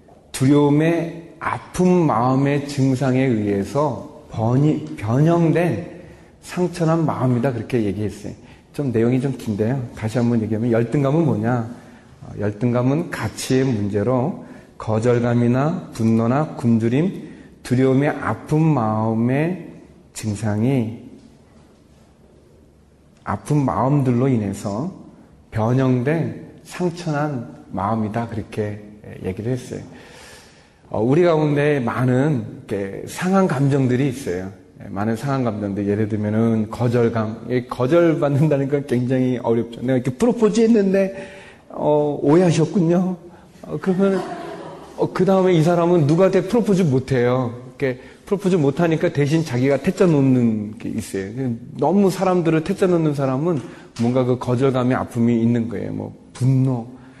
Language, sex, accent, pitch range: Korean, male, native, 115-155 Hz